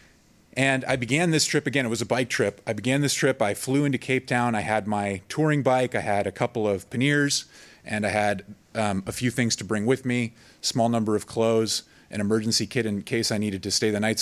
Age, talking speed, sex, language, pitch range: 30-49, 240 wpm, male, English, 105-130 Hz